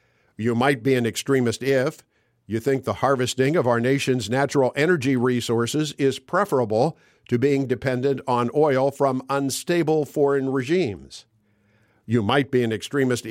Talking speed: 145 wpm